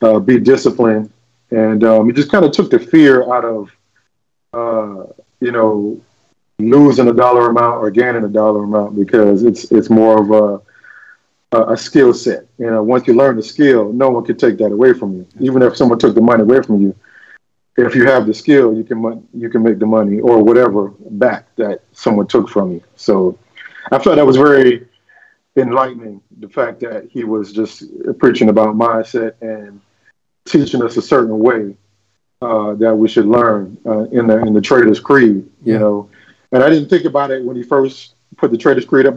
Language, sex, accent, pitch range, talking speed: English, male, American, 110-125 Hz, 200 wpm